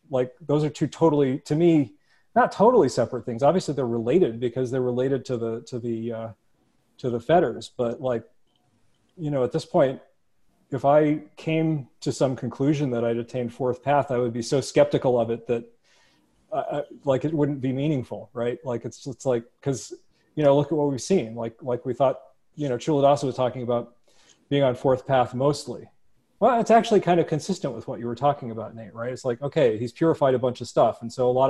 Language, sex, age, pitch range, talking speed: English, male, 40-59, 115-145 Hz, 215 wpm